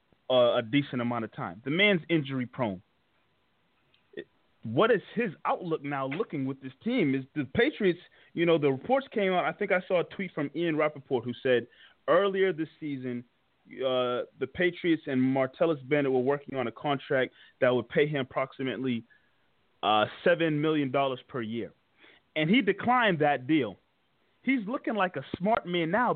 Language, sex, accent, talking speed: English, male, American, 165 wpm